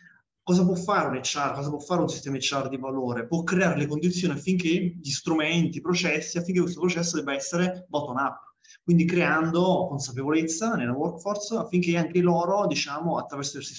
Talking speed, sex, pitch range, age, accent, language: 170 wpm, male, 140-180 Hz, 20-39, native, Italian